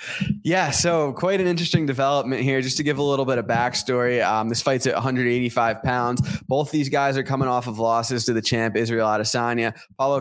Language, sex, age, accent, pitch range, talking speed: English, male, 20-39, American, 120-140 Hz, 205 wpm